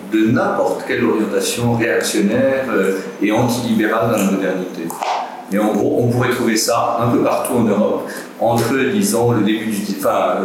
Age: 50-69